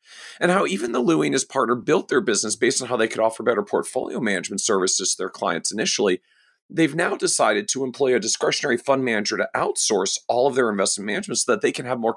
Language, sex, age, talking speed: English, male, 40-59, 220 wpm